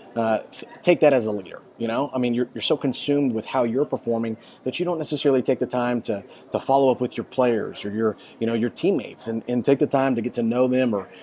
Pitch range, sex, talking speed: 110-130 Hz, male, 260 wpm